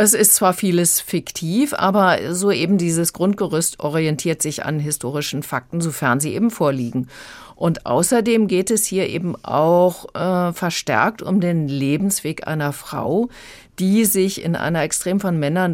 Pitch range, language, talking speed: 155-195 Hz, German, 155 wpm